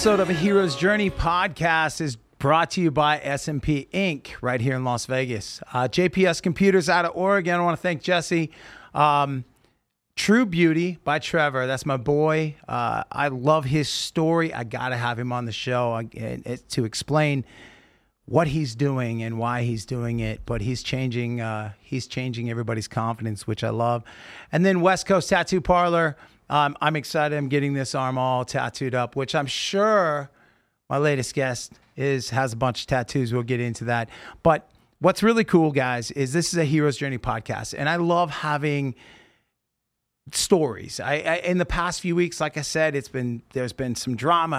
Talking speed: 180 wpm